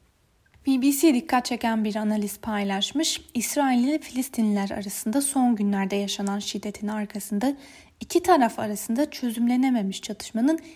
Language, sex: Turkish, female